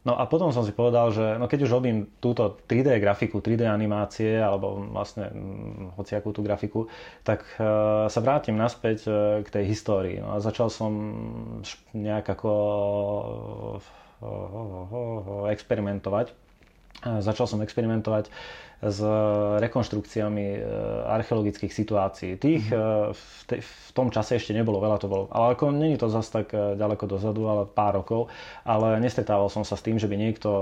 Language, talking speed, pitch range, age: Czech, 135 wpm, 100-110 Hz, 20-39